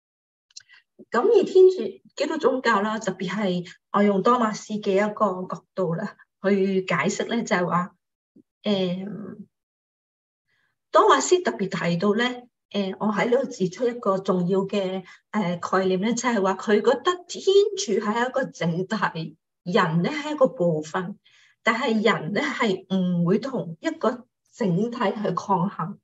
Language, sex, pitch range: English, female, 185-245 Hz